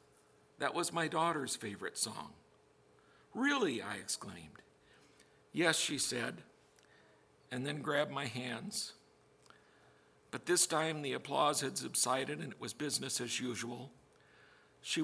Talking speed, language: 125 wpm, English